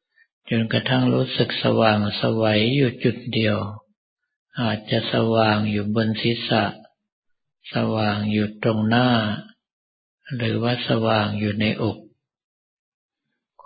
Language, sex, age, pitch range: Thai, male, 50-69, 110-125 Hz